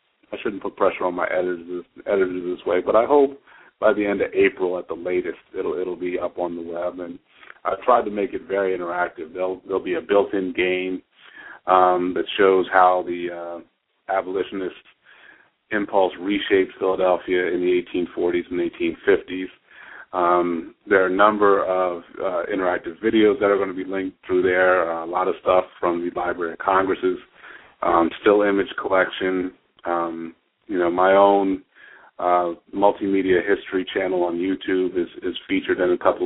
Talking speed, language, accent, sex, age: 175 wpm, English, American, male, 30-49